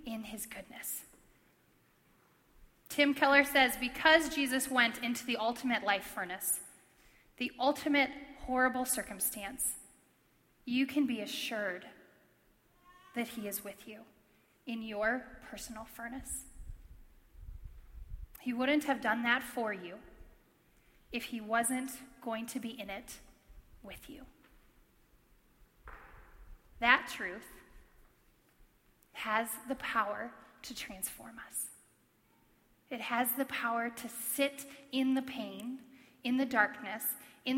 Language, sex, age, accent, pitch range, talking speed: English, female, 10-29, American, 220-270 Hz, 110 wpm